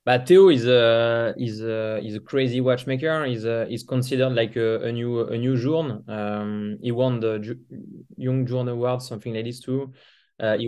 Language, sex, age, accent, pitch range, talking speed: English, male, 20-39, French, 110-125 Hz, 210 wpm